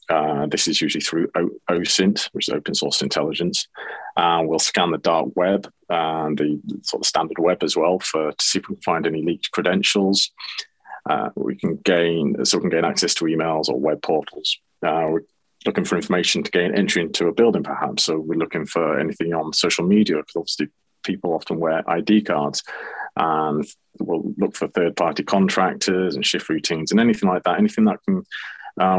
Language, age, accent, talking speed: English, 30-49, British, 195 wpm